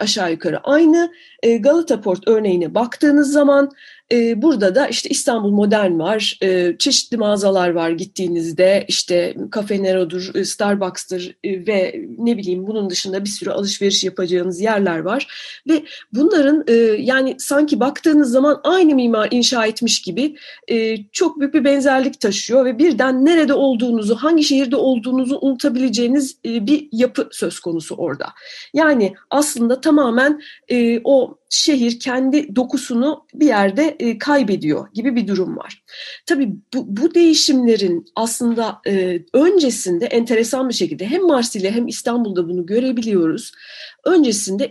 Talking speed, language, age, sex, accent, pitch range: 125 wpm, Turkish, 40-59, female, native, 195-285 Hz